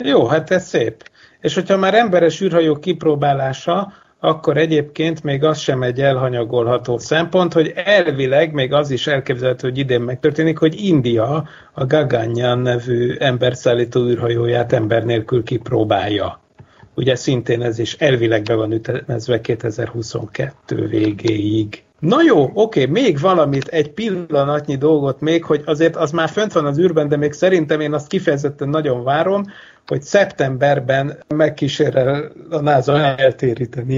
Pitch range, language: 125-155 Hz, Hungarian